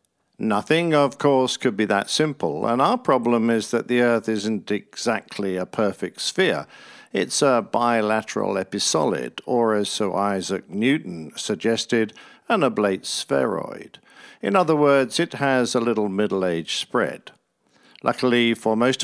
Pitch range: 105-135 Hz